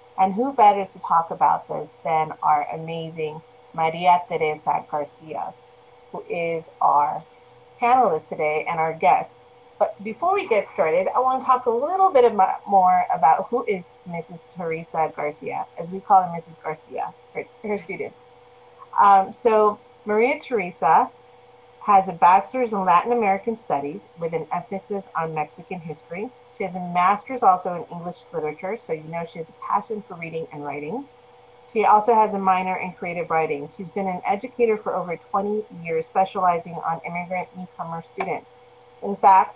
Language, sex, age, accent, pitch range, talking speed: English, female, 30-49, American, 165-215 Hz, 160 wpm